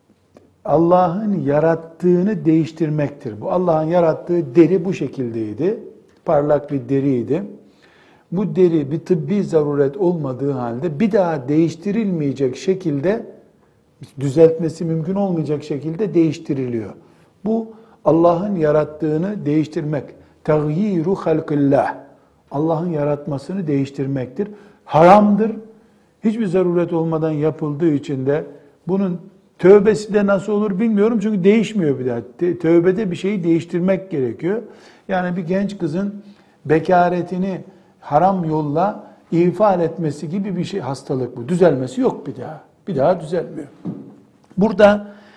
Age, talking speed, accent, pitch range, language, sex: 60-79, 105 wpm, native, 150-190 Hz, Turkish, male